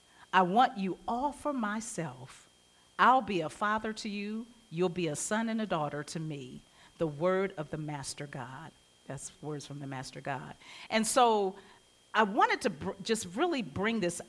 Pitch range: 160-215 Hz